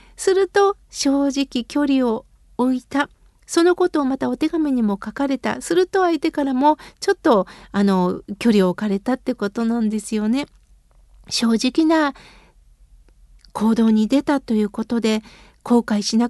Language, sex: Japanese, female